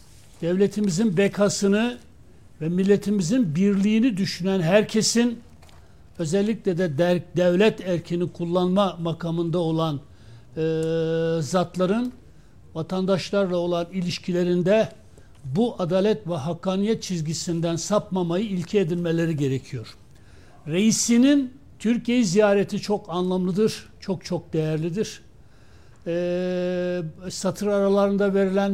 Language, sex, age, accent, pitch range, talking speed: Turkish, male, 60-79, native, 165-200 Hz, 85 wpm